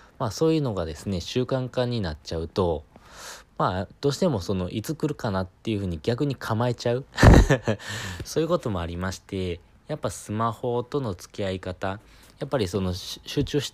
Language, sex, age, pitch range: Japanese, male, 20-39, 95-120 Hz